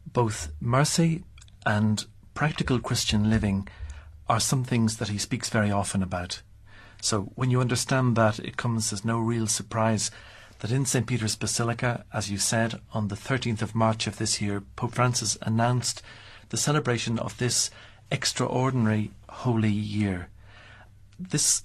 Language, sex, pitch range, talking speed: English, male, 100-120 Hz, 145 wpm